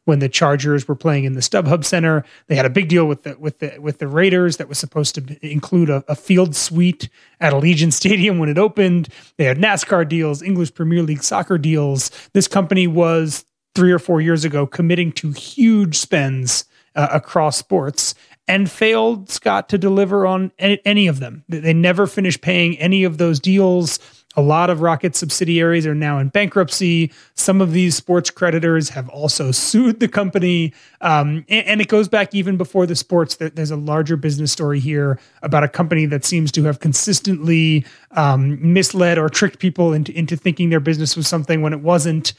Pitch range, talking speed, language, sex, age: 150-180 Hz, 190 wpm, English, male, 30-49